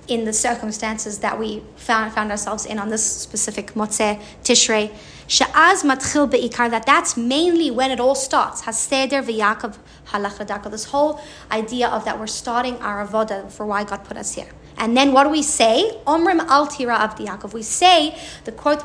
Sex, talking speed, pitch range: female, 165 wpm, 220-275 Hz